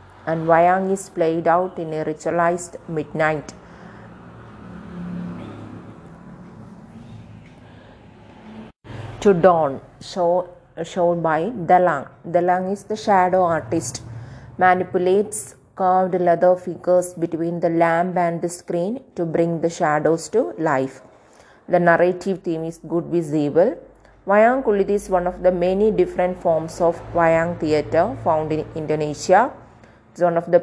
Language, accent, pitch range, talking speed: English, Indian, 160-185 Hz, 120 wpm